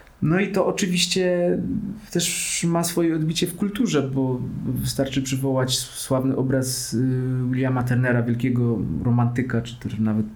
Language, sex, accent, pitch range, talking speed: Polish, male, native, 120-135 Hz, 125 wpm